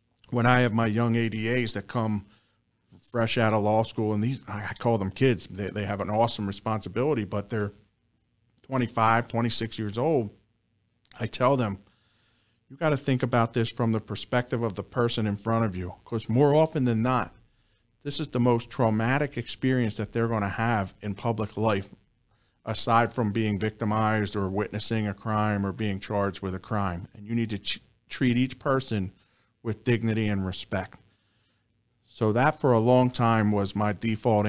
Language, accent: English, American